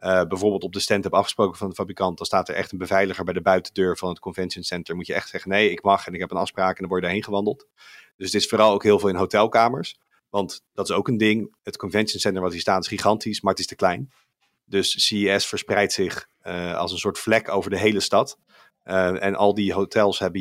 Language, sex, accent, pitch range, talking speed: Dutch, male, Dutch, 90-105 Hz, 255 wpm